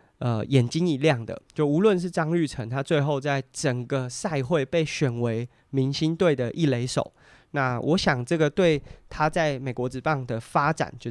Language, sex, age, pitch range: Chinese, male, 20-39, 125-155 Hz